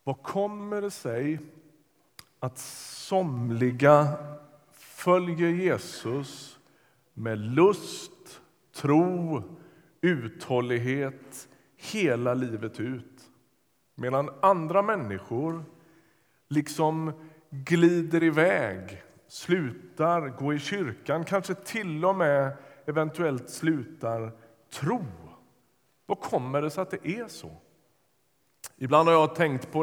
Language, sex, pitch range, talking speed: Swedish, male, 135-175 Hz, 90 wpm